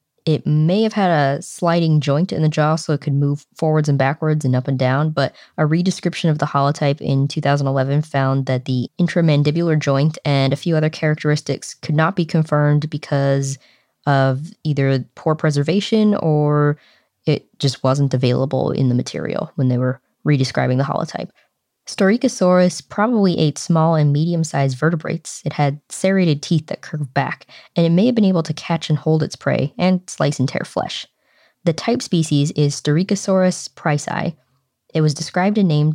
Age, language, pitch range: 20-39, English, 140-165 Hz